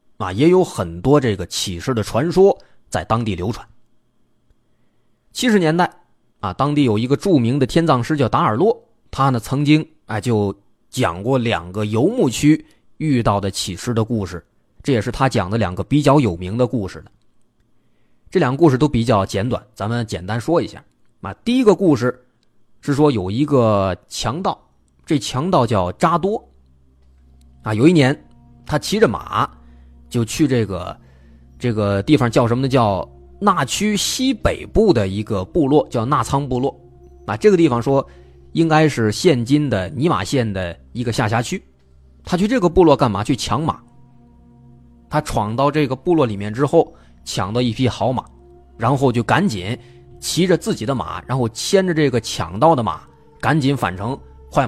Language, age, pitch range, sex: Chinese, 20-39, 95-145 Hz, male